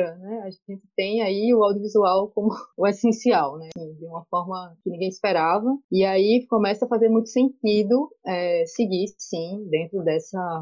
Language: Portuguese